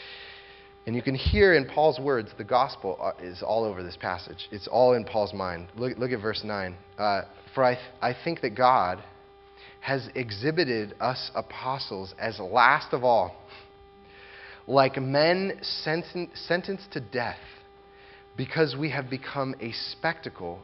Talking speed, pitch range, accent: 140 wpm, 105-150 Hz, American